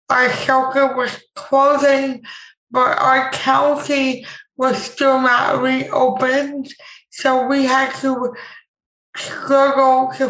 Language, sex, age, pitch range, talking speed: English, female, 20-39, 245-270 Hz, 100 wpm